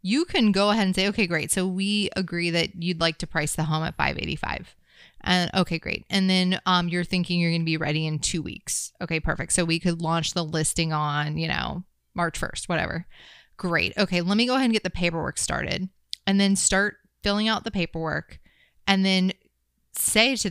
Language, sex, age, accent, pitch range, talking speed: English, female, 20-39, American, 160-195 Hz, 215 wpm